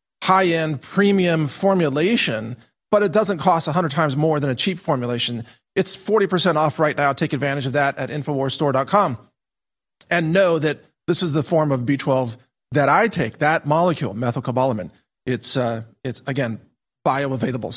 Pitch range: 130-180 Hz